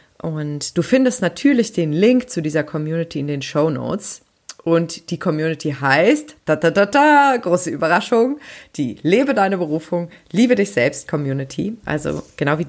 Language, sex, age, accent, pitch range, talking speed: German, female, 20-39, German, 165-210 Hz, 130 wpm